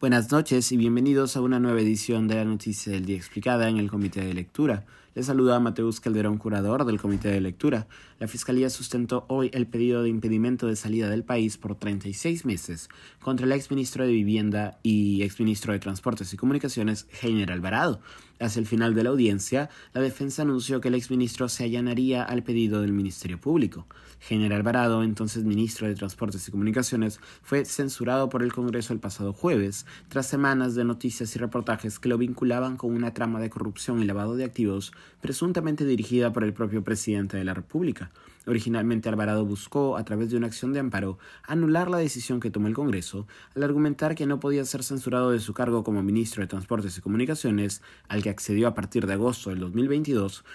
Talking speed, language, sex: 190 wpm, Spanish, male